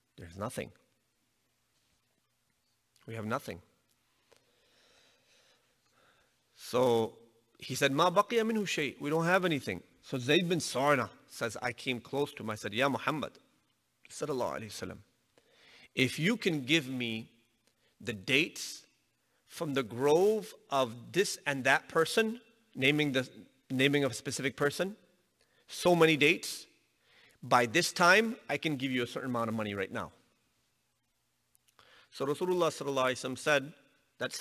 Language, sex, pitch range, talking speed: English, male, 125-160 Hz, 135 wpm